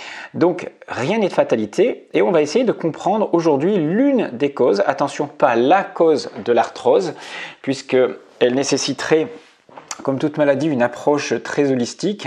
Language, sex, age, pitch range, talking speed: English, male, 40-59, 120-160 Hz, 150 wpm